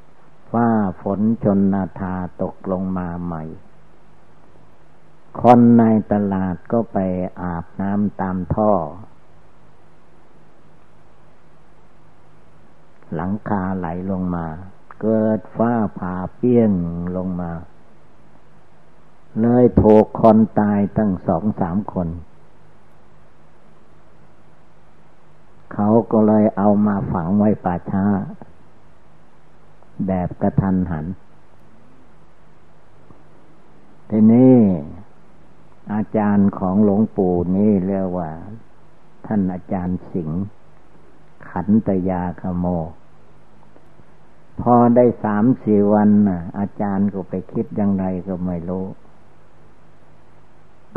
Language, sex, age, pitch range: Thai, male, 60-79, 90-110 Hz